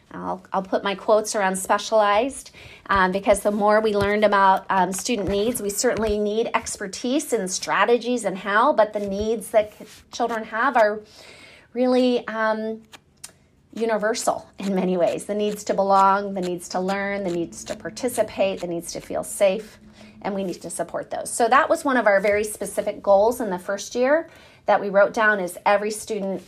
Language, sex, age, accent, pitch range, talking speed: English, female, 30-49, American, 195-235 Hz, 185 wpm